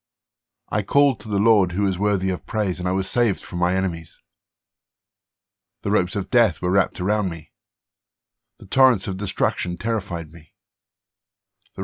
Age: 50-69